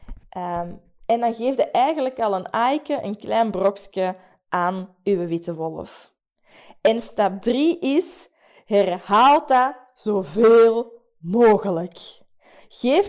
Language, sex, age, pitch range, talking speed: Dutch, female, 20-39, 195-300 Hz, 115 wpm